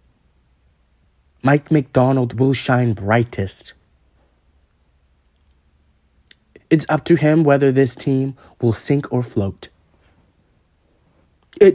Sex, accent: male, American